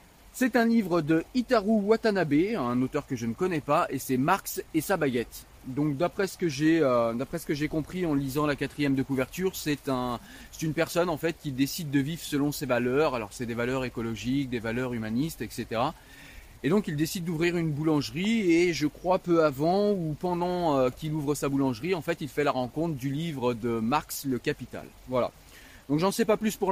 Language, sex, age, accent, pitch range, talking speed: French, male, 30-49, French, 125-165 Hz, 220 wpm